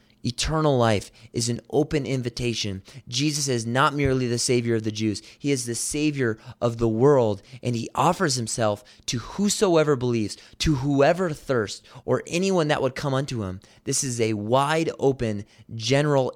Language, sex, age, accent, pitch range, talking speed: English, male, 30-49, American, 105-130 Hz, 165 wpm